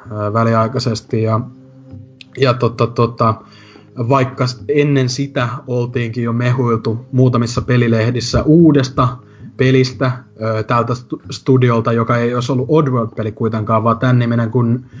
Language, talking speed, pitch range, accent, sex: Finnish, 105 wpm, 115-130 Hz, native, male